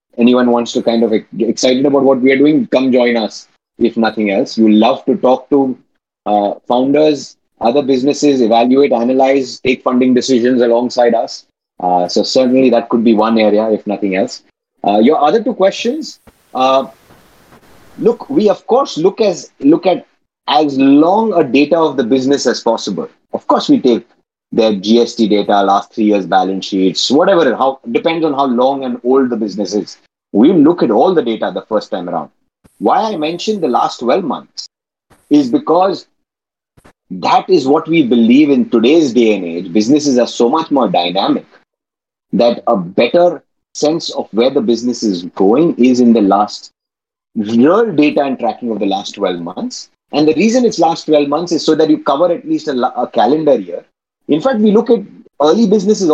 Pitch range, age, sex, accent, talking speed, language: 115-160 Hz, 30-49, male, Indian, 185 wpm, English